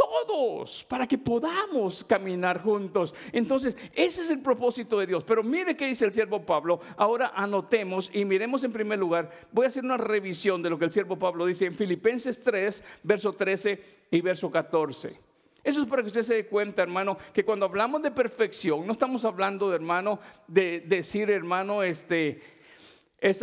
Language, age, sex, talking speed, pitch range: Spanish, 50-69, male, 180 wpm, 170-225 Hz